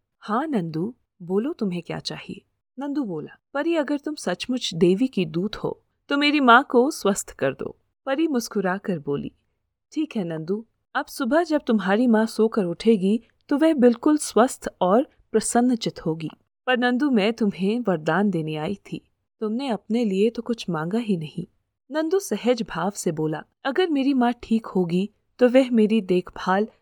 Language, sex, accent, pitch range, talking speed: Hindi, female, native, 180-250 Hz, 165 wpm